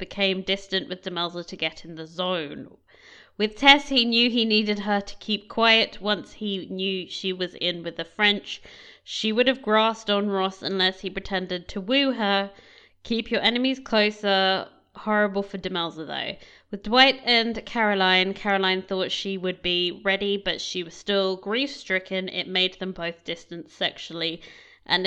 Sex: female